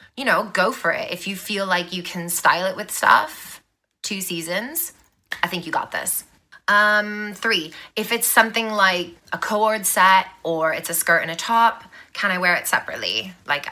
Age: 20-39